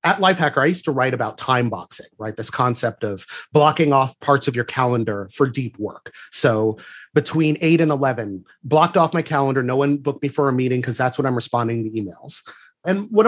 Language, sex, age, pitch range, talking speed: English, male, 30-49, 125-170 Hz, 215 wpm